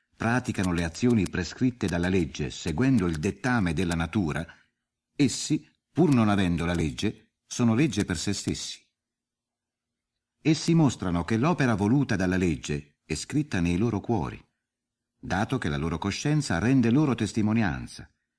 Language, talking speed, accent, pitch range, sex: Italian, 135 wpm, native, 90-130 Hz, male